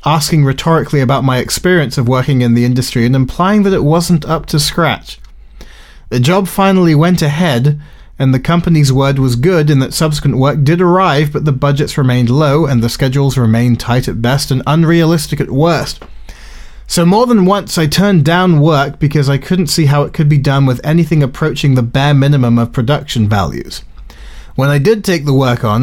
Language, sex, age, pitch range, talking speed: English, male, 30-49, 125-160 Hz, 195 wpm